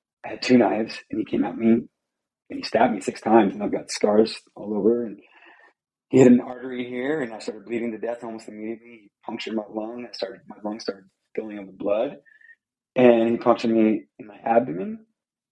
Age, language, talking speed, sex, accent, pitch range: 30-49, English, 215 wpm, male, American, 105-125 Hz